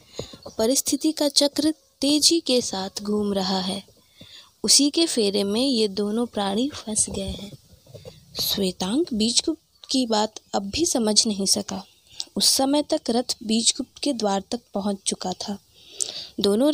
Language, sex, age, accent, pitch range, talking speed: Hindi, female, 20-39, native, 200-265 Hz, 145 wpm